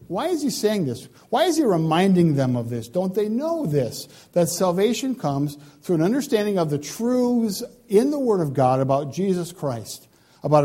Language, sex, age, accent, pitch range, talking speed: English, male, 50-69, American, 145-205 Hz, 190 wpm